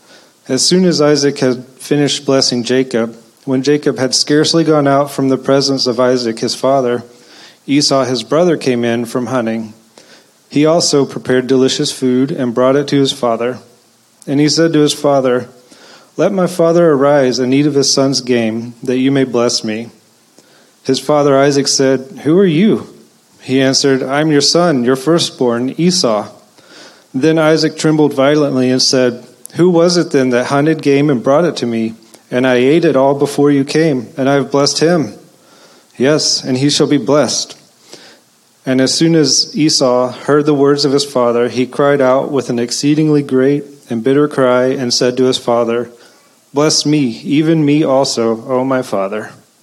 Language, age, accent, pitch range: English, 30-49, American, 125-145 Hz